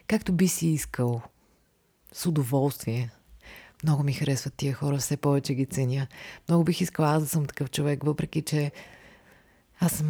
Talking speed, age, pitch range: 155 wpm, 20-39, 140-170 Hz